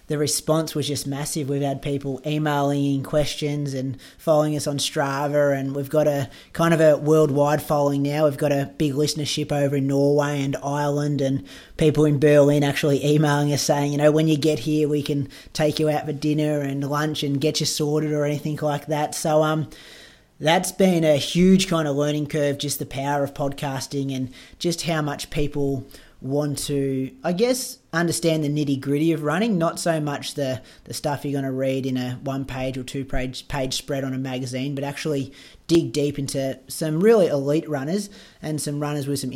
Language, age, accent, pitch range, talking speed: English, 20-39, Australian, 140-150 Hz, 200 wpm